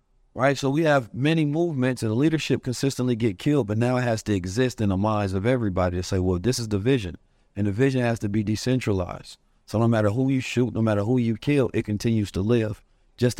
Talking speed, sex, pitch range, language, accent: 235 wpm, male, 110-135 Hz, English, American